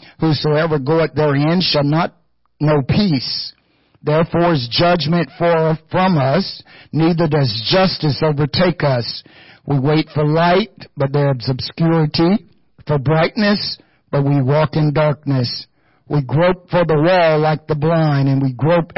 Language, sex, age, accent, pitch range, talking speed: English, male, 60-79, American, 130-155 Hz, 140 wpm